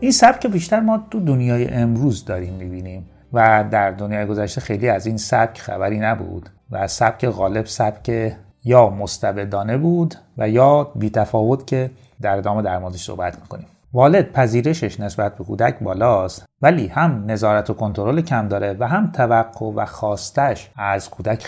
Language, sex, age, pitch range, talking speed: Persian, male, 30-49, 105-140 Hz, 155 wpm